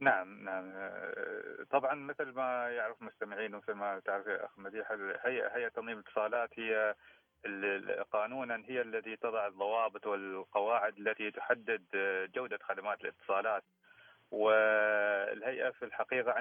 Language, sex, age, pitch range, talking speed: Arabic, male, 30-49, 100-120 Hz, 105 wpm